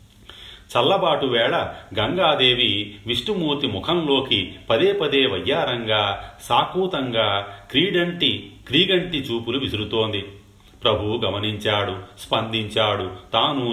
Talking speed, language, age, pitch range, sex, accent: 75 wpm, Telugu, 40-59, 100-125 Hz, male, native